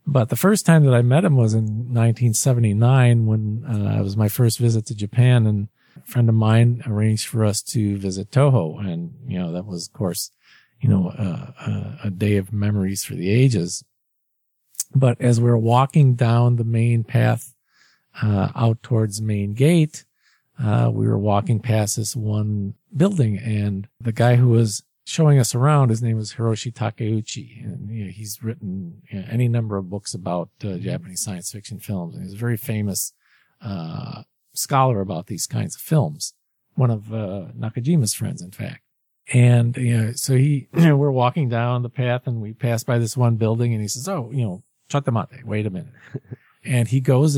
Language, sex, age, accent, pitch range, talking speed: English, male, 50-69, American, 105-125 Hz, 195 wpm